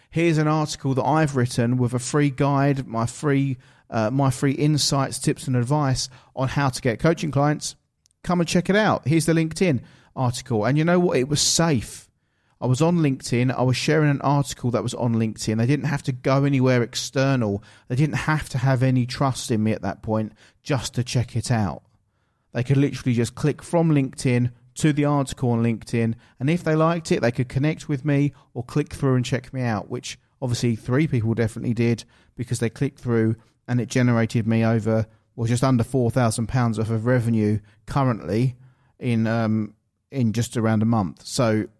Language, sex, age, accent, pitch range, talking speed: English, male, 40-59, British, 115-140 Hz, 200 wpm